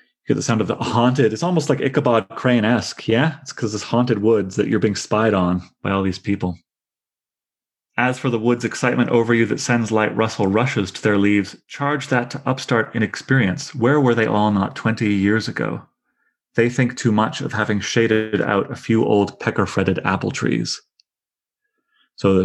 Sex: male